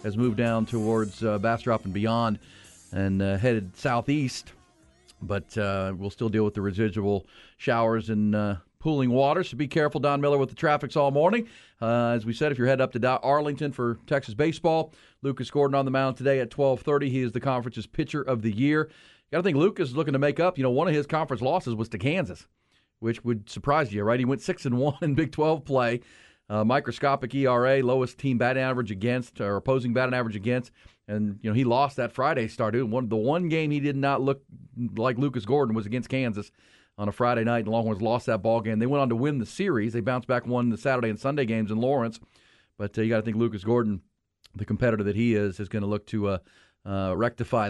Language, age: English, 40-59